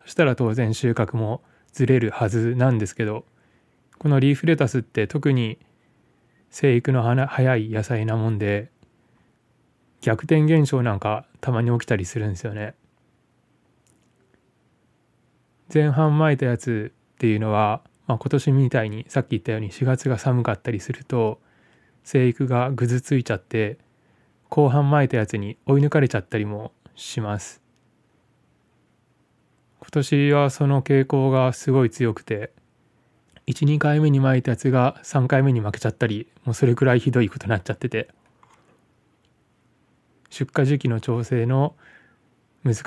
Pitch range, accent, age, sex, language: 115-140 Hz, native, 20-39, male, Japanese